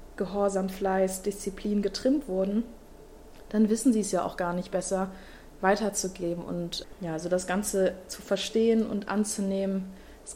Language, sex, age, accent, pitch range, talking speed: German, female, 20-39, German, 185-210 Hz, 145 wpm